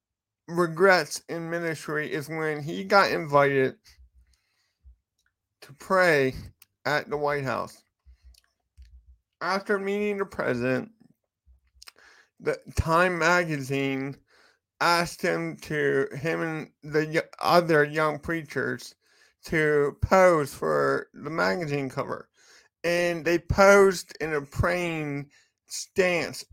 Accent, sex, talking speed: American, male, 95 wpm